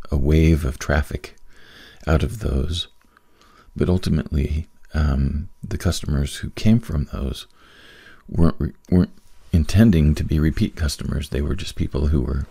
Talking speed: 140 wpm